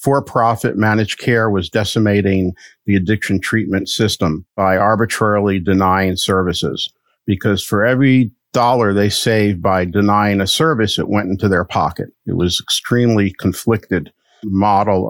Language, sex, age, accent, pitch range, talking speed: English, male, 50-69, American, 95-115 Hz, 135 wpm